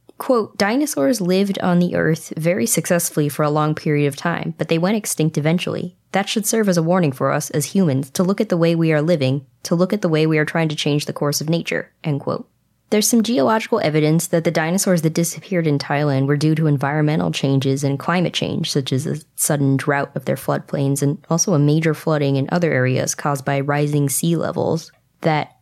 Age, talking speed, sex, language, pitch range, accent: 20-39, 220 wpm, female, English, 145-175 Hz, American